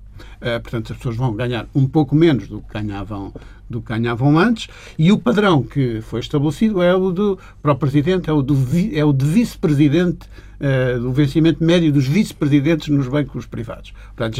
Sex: male